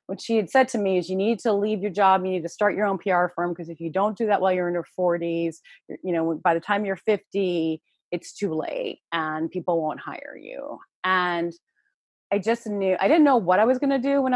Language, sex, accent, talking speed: English, female, American, 255 wpm